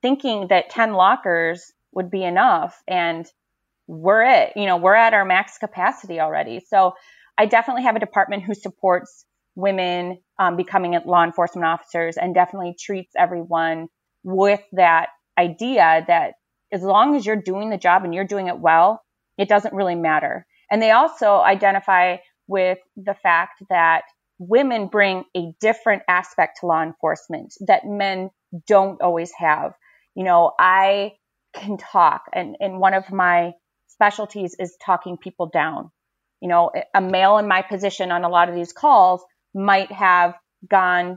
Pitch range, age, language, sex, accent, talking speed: 175-200 Hz, 30-49, English, female, American, 155 wpm